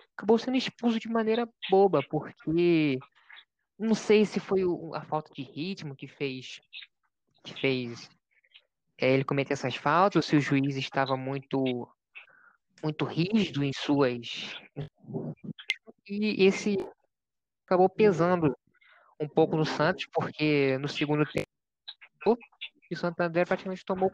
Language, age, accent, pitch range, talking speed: Portuguese, 20-39, Brazilian, 145-195 Hz, 120 wpm